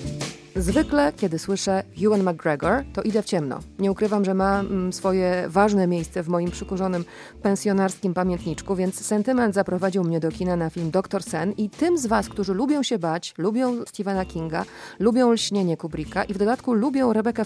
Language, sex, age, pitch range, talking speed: Polish, female, 30-49, 175-210 Hz, 170 wpm